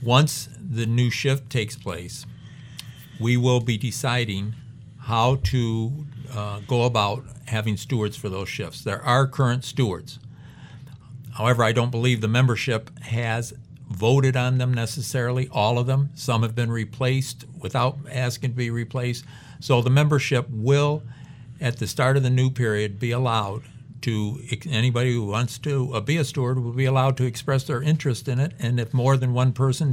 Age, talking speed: 50-69, 170 wpm